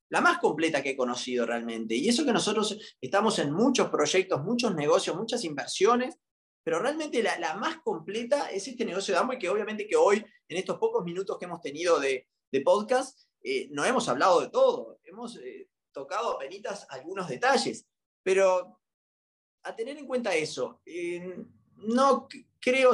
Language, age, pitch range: Spanish, 20-39, 185-290 Hz